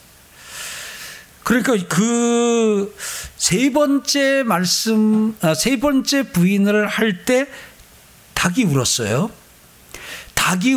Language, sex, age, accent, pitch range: Korean, male, 50-69, native, 155-235 Hz